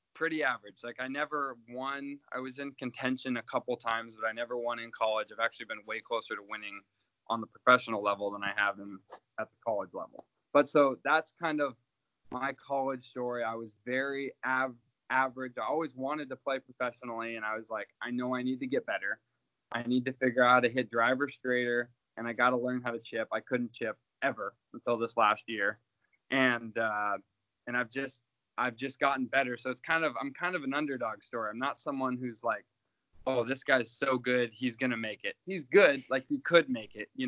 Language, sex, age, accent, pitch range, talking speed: English, male, 20-39, American, 115-135 Hz, 215 wpm